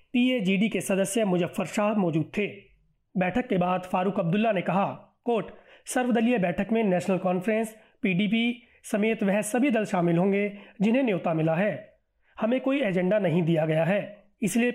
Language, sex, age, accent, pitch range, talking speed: Hindi, male, 30-49, native, 185-225 Hz, 160 wpm